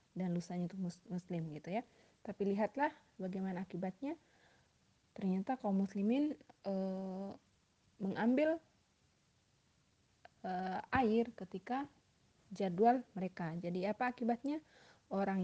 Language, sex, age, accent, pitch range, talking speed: Indonesian, female, 30-49, native, 180-220 Hz, 95 wpm